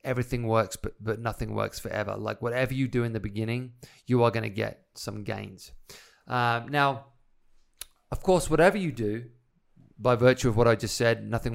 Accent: British